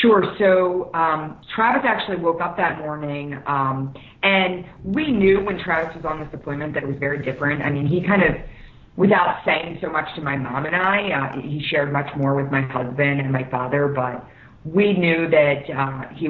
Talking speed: 205 wpm